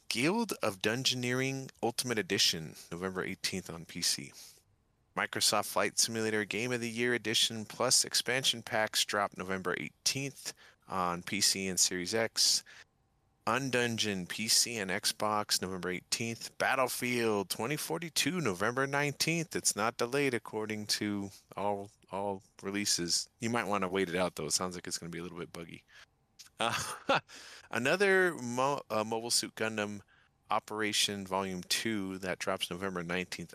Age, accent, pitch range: 30-49, American, 95-120 Hz